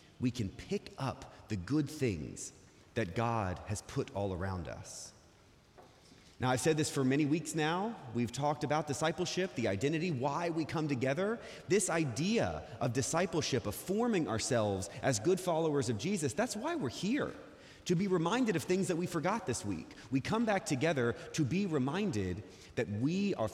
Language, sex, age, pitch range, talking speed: English, male, 30-49, 115-165 Hz, 175 wpm